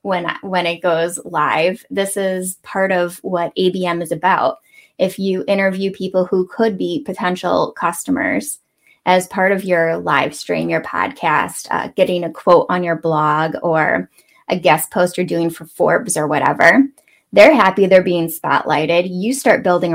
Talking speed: 165 wpm